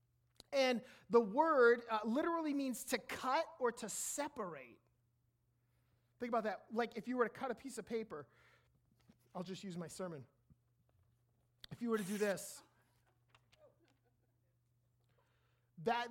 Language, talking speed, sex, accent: English, 135 wpm, male, American